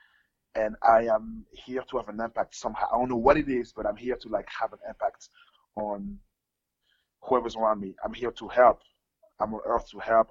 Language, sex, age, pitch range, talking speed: English, male, 20-39, 110-130 Hz, 210 wpm